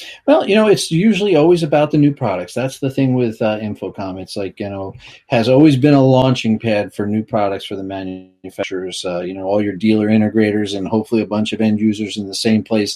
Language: English